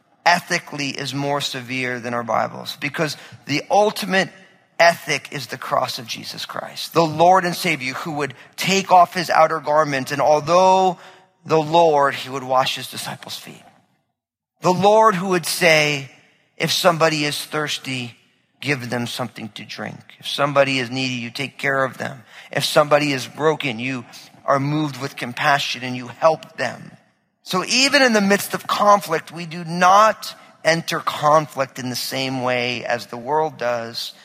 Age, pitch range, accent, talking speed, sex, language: 40-59, 125-165 Hz, American, 165 wpm, male, English